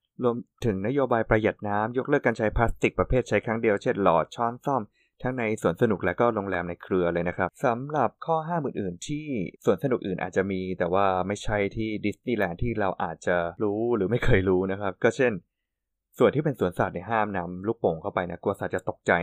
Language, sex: Thai, male